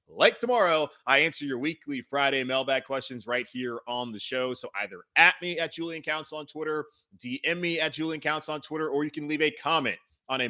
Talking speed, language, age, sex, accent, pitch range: 215 wpm, English, 20-39, male, American, 120-160 Hz